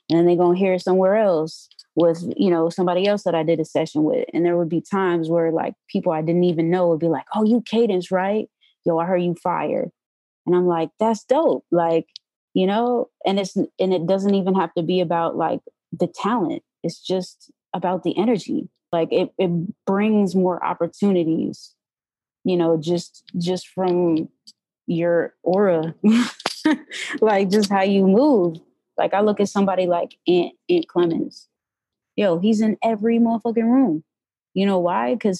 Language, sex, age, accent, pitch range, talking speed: English, female, 20-39, American, 170-225 Hz, 180 wpm